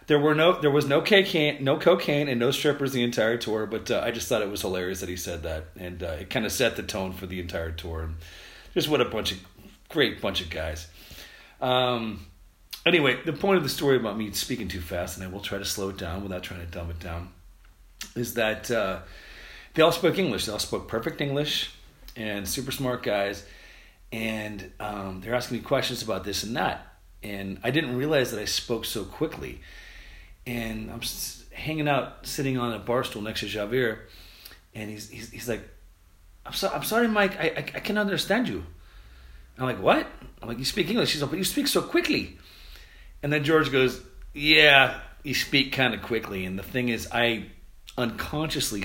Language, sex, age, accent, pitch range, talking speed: English, male, 40-59, American, 95-130 Hz, 210 wpm